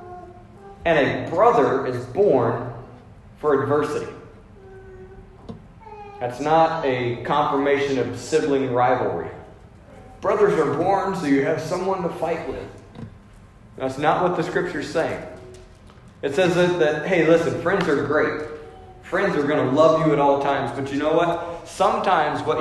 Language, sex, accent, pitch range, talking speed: English, male, American, 130-190 Hz, 145 wpm